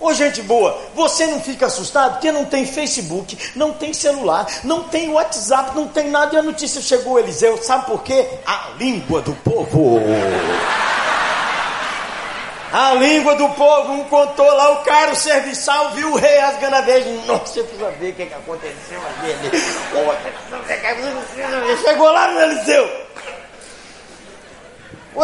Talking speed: 145 wpm